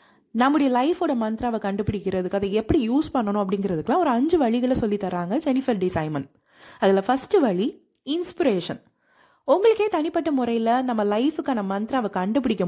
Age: 30-49